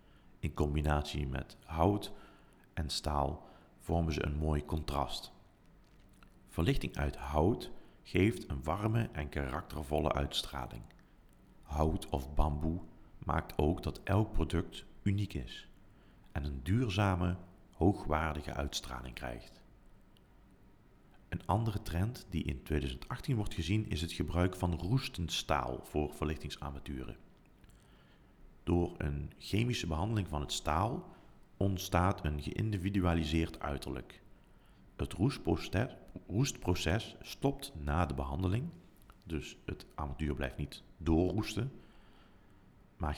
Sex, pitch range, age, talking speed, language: male, 75-95 Hz, 40-59, 105 wpm, Dutch